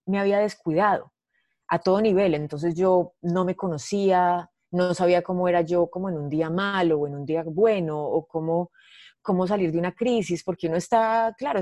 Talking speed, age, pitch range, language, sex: 190 wpm, 30-49, 160-200 Hz, Spanish, female